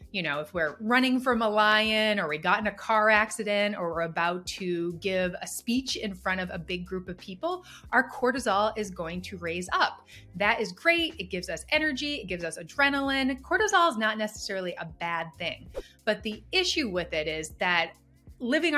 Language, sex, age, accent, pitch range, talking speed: English, female, 30-49, American, 175-245 Hz, 200 wpm